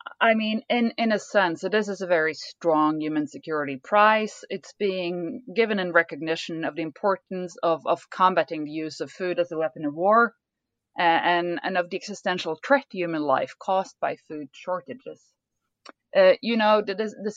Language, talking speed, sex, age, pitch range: English, 185 wpm, female, 30-49, 160-200 Hz